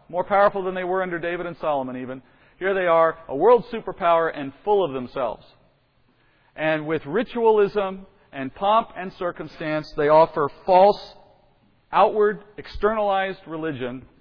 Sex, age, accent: male, 40-59, American